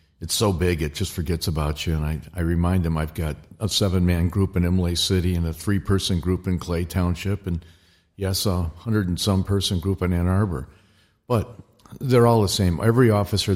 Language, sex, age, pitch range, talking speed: English, male, 50-69, 85-100 Hz, 190 wpm